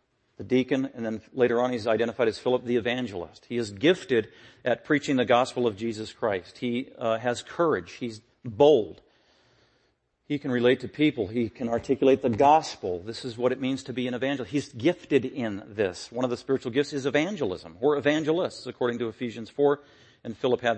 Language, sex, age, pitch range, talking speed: English, male, 40-59, 115-140 Hz, 195 wpm